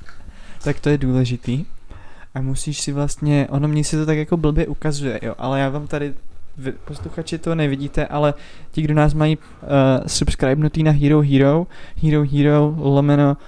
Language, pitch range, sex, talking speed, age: Czech, 135-150 Hz, male, 165 wpm, 20-39